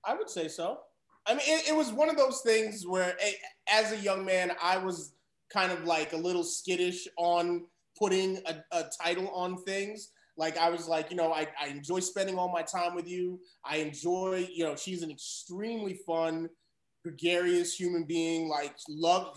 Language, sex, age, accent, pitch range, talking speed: English, male, 30-49, American, 160-195 Hz, 190 wpm